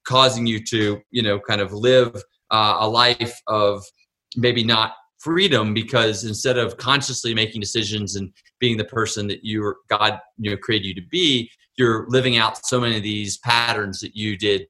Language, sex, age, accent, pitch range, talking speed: English, male, 30-49, American, 105-130 Hz, 190 wpm